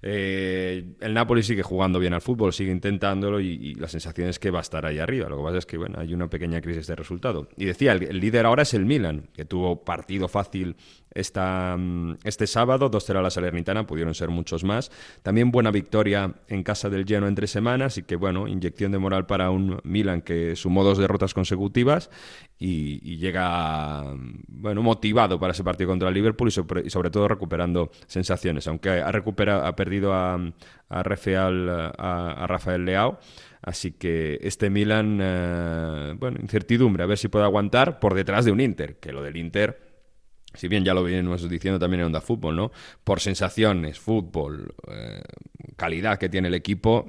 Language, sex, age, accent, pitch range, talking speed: Spanish, male, 30-49, Spanish, 85-105 Hz, 190 wpm